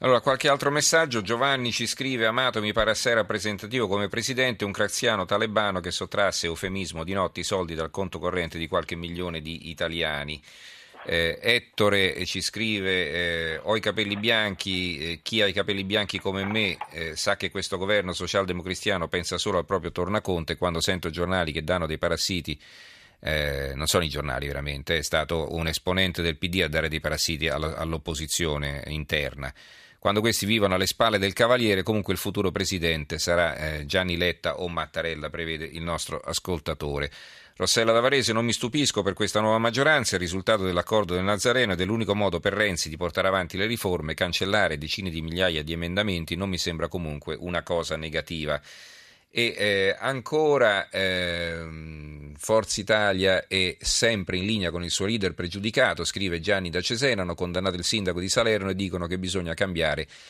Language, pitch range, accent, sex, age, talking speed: Italian, 85-105 Hz, native, male, 40-59, 170 wpm